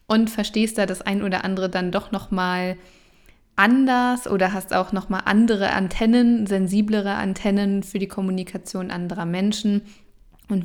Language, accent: German, German